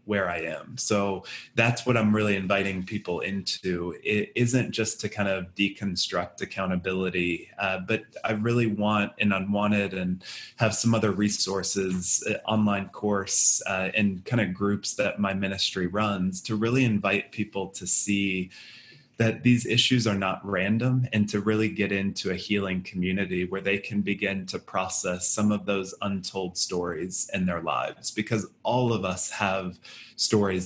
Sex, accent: male, American